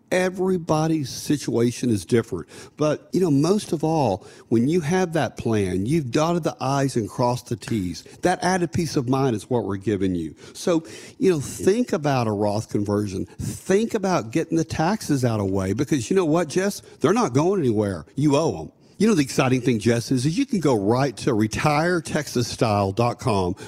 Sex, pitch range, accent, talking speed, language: male, 120-180 Hz, American, 190 wpm, English